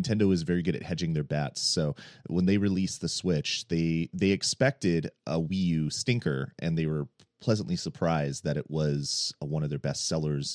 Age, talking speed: 30-49, 200 wpm